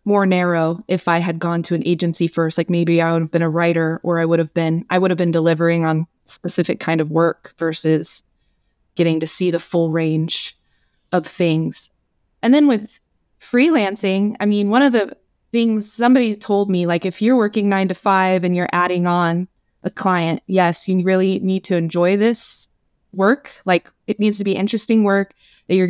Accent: American